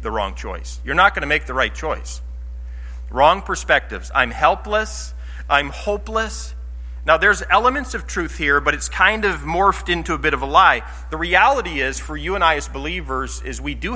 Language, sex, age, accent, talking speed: English, male, 40-59, American, 200 wpm